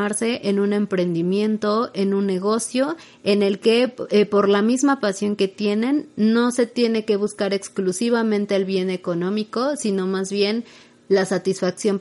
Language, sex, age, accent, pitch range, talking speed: Spanish, female, 30-49, Mexican, 190-220 Hz, 150 wpm